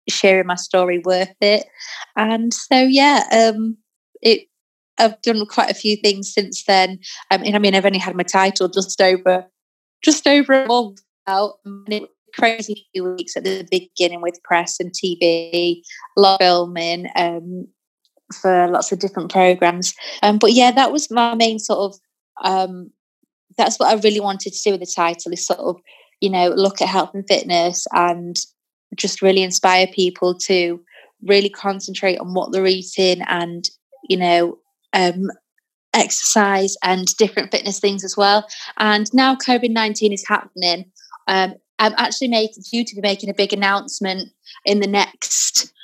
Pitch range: 185-215 Hz